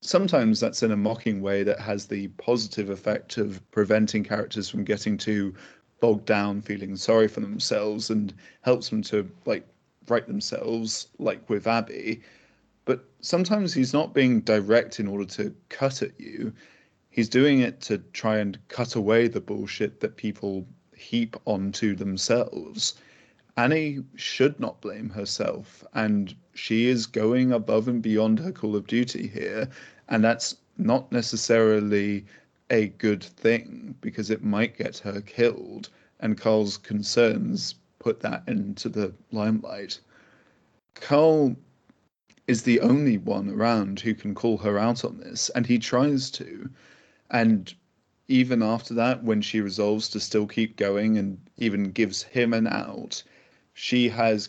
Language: English